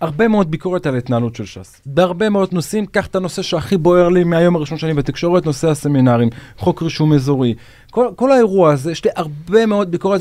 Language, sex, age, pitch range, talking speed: Hebrew, male, 30-49, 125-200 Hz, 200 wpm